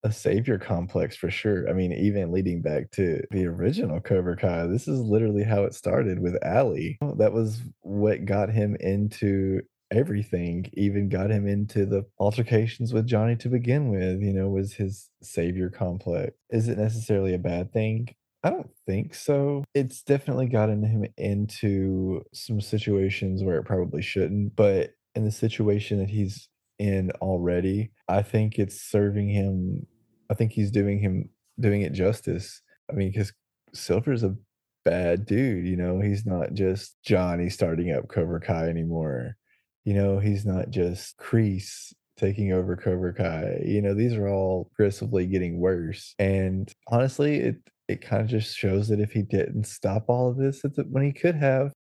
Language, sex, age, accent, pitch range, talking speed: English, male, 20-39, American, 95-115 Hz, 170 wpm